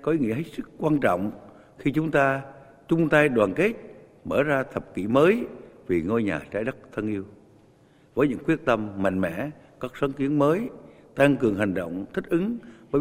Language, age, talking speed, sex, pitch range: Vietnamese, 60-79, 190 wpm, male, 110-150 Hz